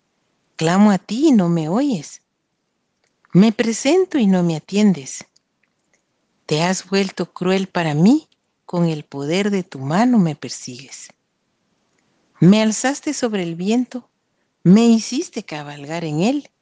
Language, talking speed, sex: Spanish, 135 wpm, female